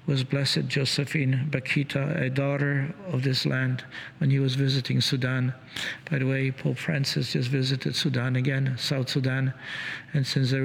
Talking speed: 160 wpm